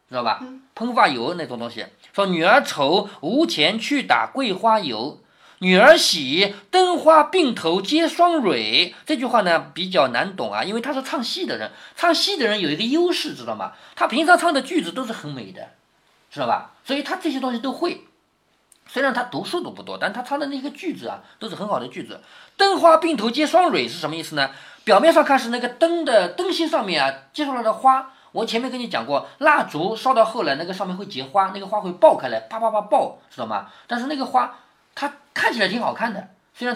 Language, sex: Chinese, male